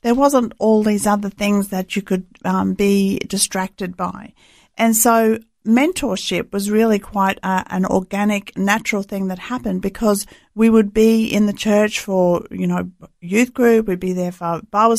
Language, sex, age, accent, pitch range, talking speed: English, female, 50-69, Australian, 185-220 Hz, 170 wpm